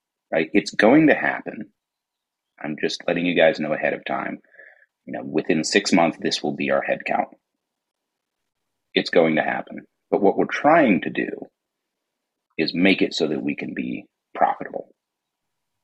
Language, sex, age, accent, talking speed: English, male, 30-49, American, 165 wpm